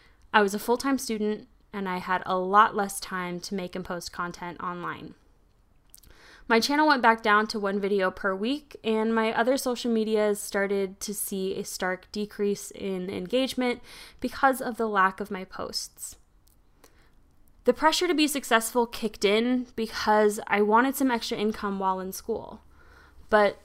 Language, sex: English, female